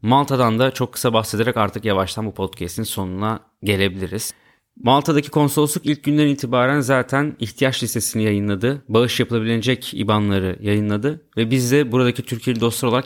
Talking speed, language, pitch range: 140 wpm, Turkish, 105-125 Hz